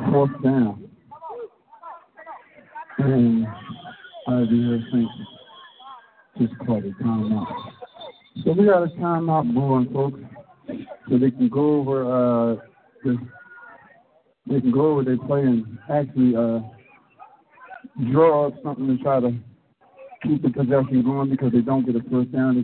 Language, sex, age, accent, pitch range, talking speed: English, male, 50-69, American, 120-145 Hz, 135 wpm